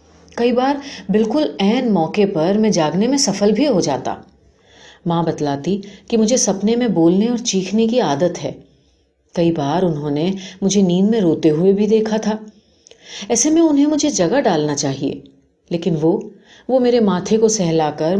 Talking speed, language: 170 wpm, Urdu